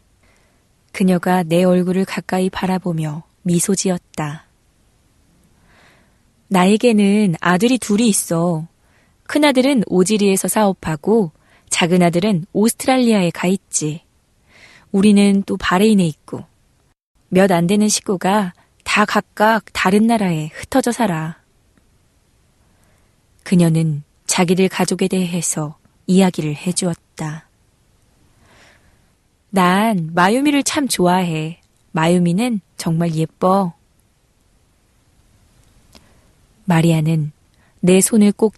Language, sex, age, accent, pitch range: Korean, female, 20-39, native, 160-200 Hz